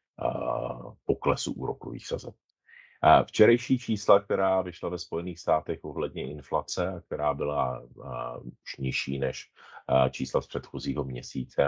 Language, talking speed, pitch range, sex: Czech, 110 wpm, 65-75 Hz, male